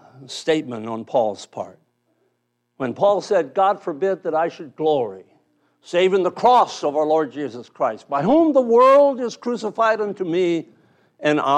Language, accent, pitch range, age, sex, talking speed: English, American, 120-180 Hz, 60-79, male, 160 wpm